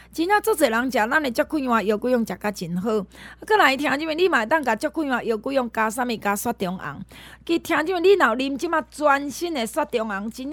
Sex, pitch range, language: female, 220-315 Hz, Chinese